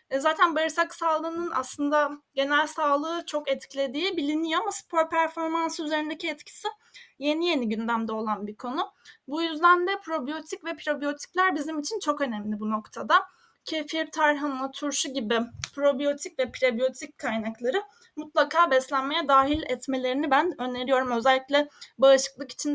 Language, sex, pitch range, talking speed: Turkish, female, 265-315 Hz, 130 wpm